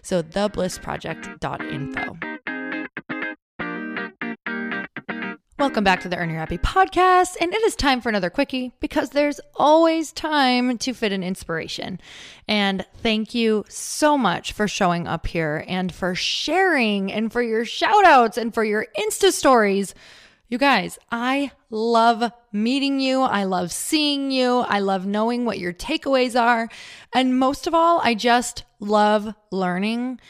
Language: English